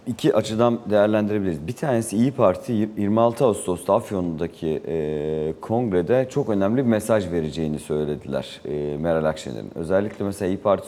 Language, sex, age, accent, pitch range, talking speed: Turkish, male, 40-59, native, 90-120 Hz, 140 wpm